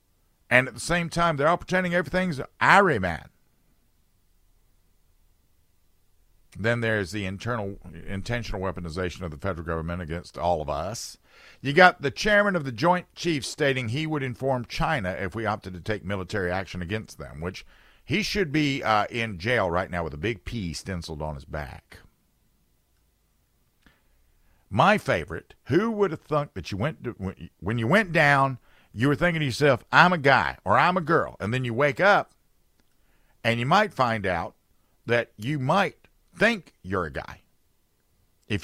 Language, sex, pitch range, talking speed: English, male, 90-140 Hz, 170 wpm